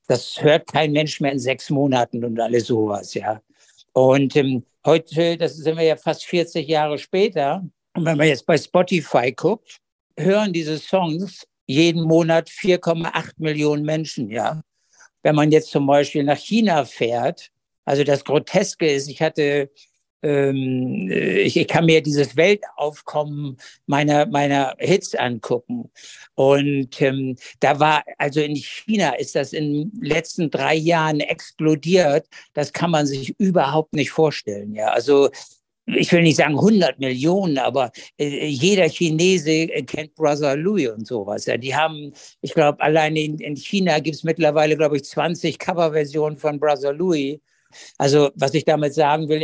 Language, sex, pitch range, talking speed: German, male, 145-165 Hz, 155 wpm